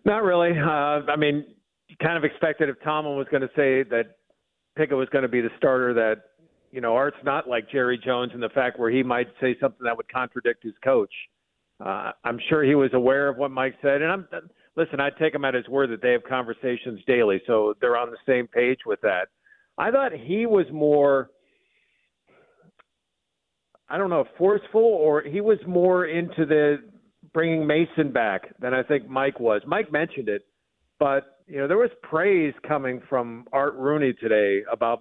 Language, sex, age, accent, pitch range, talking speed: English, male, 50-69, American, 130-170 Hz, 195 wpm